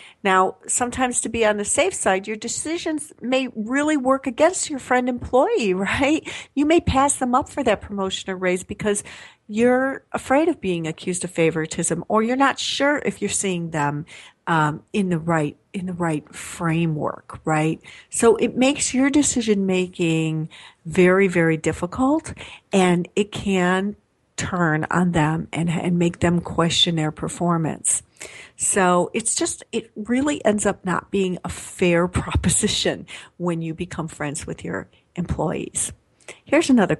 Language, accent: English, American